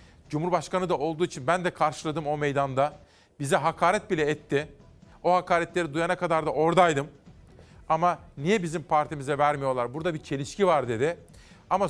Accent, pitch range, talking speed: native, 155-180 Hz, 150 wpm